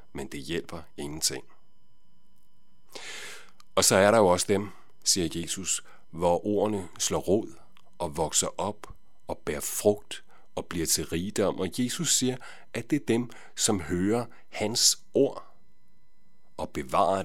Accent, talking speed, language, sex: native, 140 wpm, Danish, male